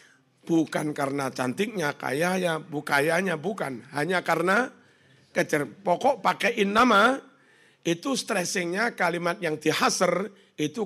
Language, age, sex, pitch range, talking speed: Indonesian, 60-79, male, 160-215 Hz, 105 wpm